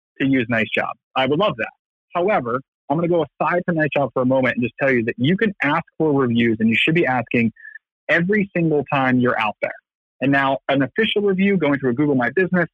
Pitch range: 125-165 Hz